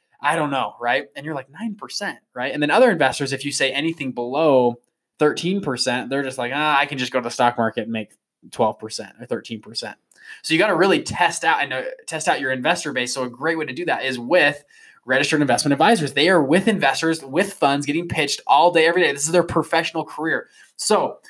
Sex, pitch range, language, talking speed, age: male, 130-165 Hz, English, 220 wpm, 20-39